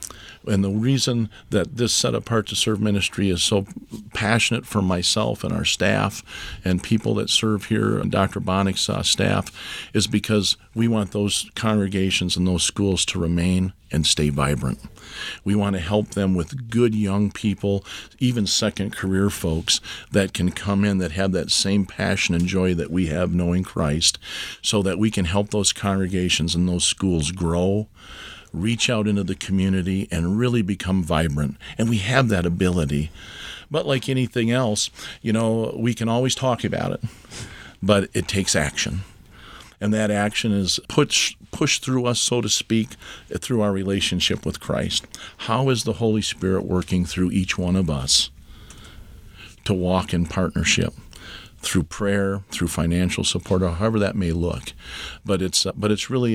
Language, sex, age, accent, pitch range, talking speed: English, male, 50-69, American, 90-110 Hz, 165 wpm